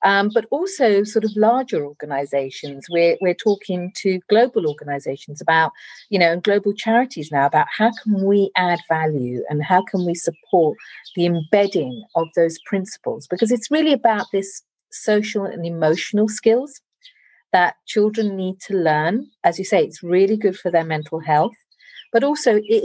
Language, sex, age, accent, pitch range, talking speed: English, female, 40-59, British, 160-210 Hz, 165 wpm